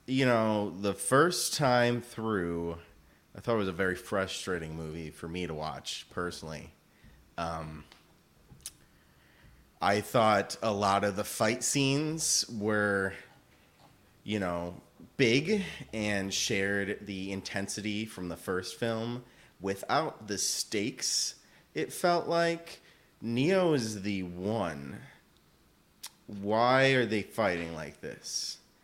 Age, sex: 30-49, male